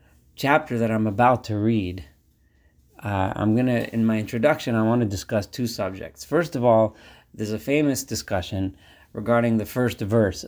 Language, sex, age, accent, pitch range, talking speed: English, male, 40-59, American, 105-120 Hz, 165 wpm